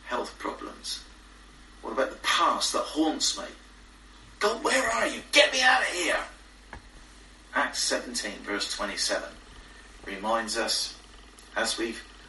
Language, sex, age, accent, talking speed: English, male, 40-59, British, 125 wpm